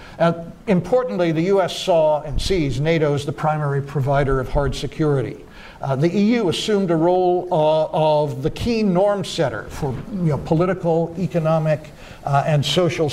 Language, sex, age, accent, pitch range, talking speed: English, male, 60-79, American, 145-175 Hz, 155 wpm